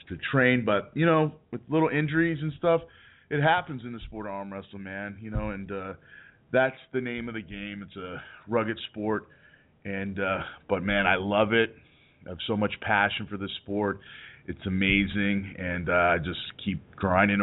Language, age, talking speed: English, 30-49, 190 wpm